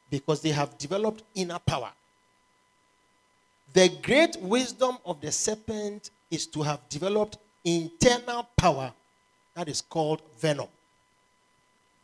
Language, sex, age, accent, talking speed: English, male, 40-59, Nigerian, 110 wpm